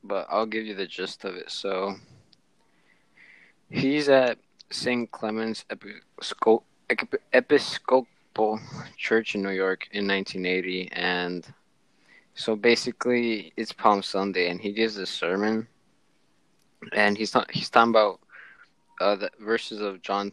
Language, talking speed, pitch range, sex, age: English, 120 wpm, 100-120 Hz, male, 20-39